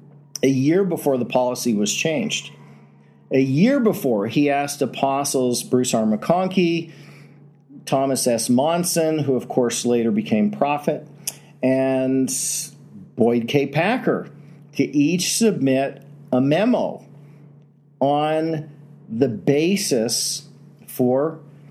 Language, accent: English, American